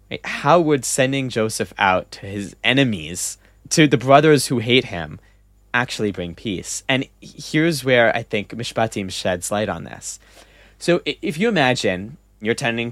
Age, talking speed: 20-39, 155 wpm